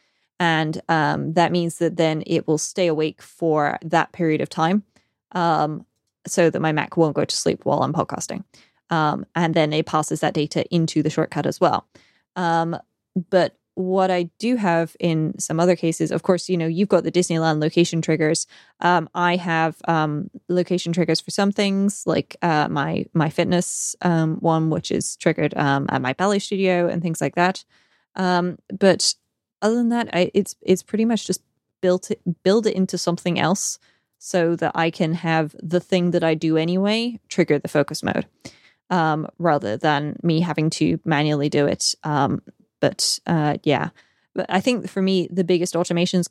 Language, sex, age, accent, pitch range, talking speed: English, female, 20-39, American, 160-185 Hz, 185 wpm